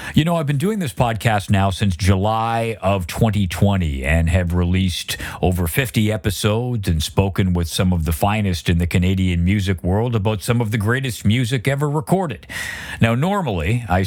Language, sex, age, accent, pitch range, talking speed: English, male, 50-69, American, 90-115 Hz, 175 wpm